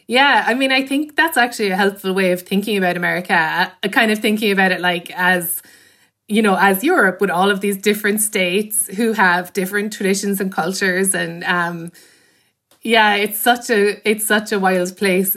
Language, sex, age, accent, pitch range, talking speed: English, female, 20-39, Irish, 180-215 Hz, 195 wpm